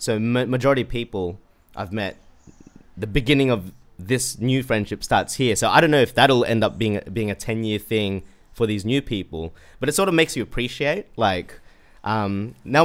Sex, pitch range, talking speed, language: male, 95-135 Hz, 190 wpm, English